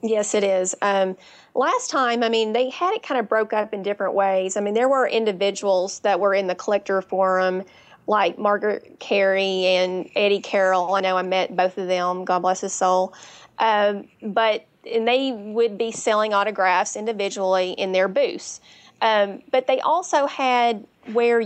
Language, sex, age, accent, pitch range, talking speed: English, female, 30-49, American, 195-235 Hz, 175 wpm